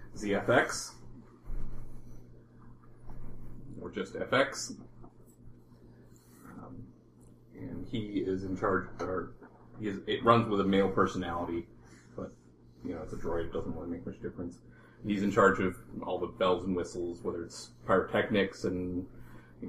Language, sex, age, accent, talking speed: English, male, 30-49, American, 135 wpm